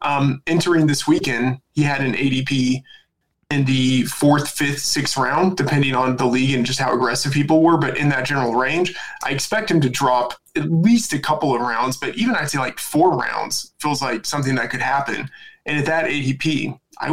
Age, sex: 20-39, male